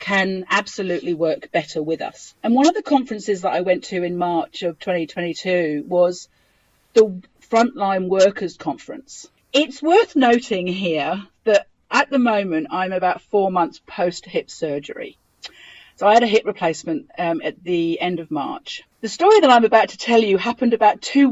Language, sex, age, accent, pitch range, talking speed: English, female, 40-59, British, 180-245 Hz, 175 wpm